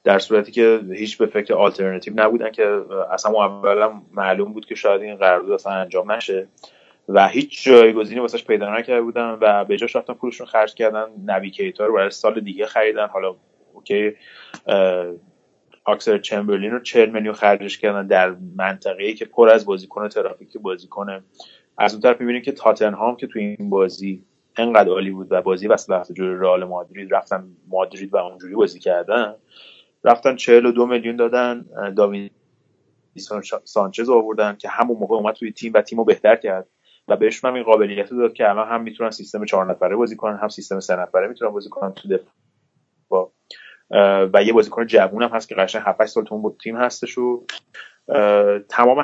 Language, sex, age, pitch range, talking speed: Persian, male, 30-49, 100-125 Hz, 170 wpm